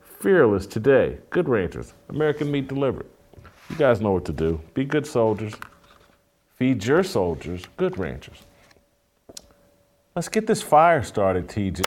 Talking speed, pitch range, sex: 135 wpm, 100-140 Hz, male